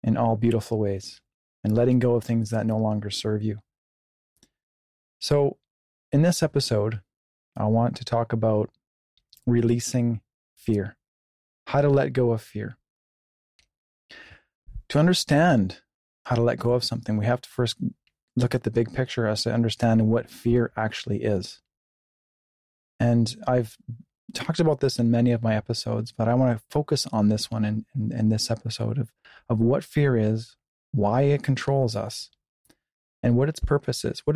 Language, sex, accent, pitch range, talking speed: English, male, American, 110-130 Hz, 160 wpm